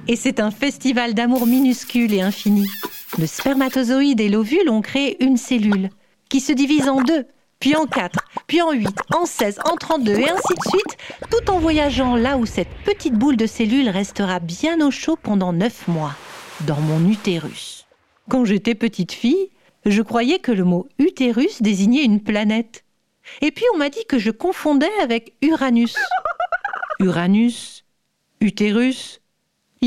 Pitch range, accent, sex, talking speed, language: 210-280 Hz, French, female, 165 wpm, French